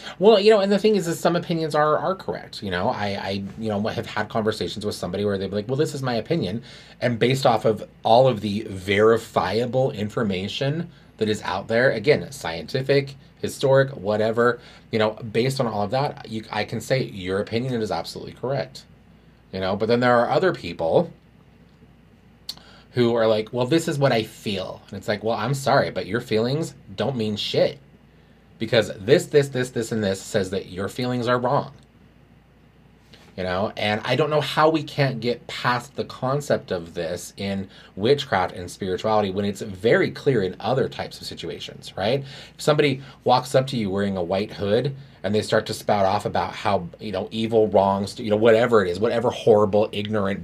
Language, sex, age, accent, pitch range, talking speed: English, male, 30-49, American, 105-140 Hz, 200 wpm